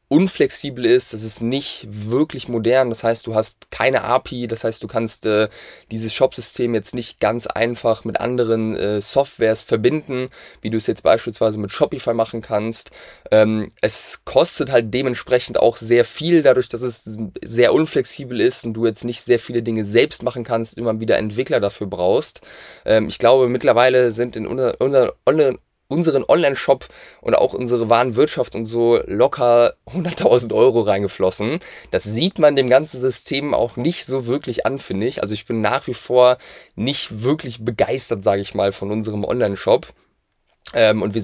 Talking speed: 175 wpm